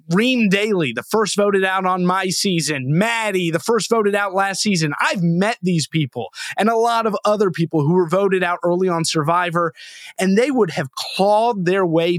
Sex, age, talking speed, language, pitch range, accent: male, 30-49, 195 wpm, English, 170-220 Hz, American